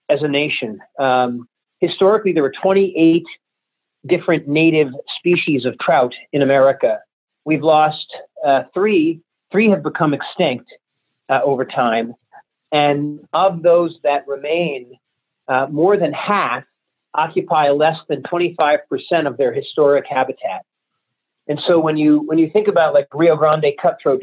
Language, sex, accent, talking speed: English, male, American, 135 wpm